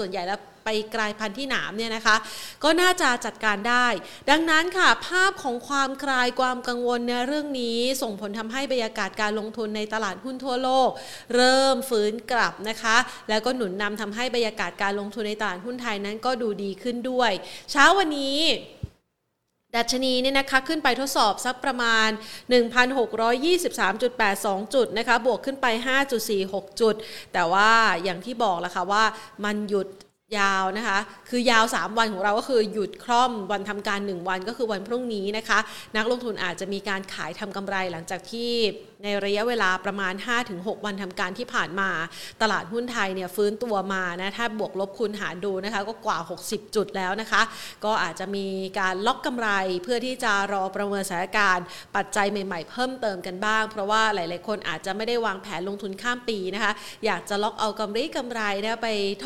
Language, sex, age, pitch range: Thai, female, 30-49, 200-245 Hz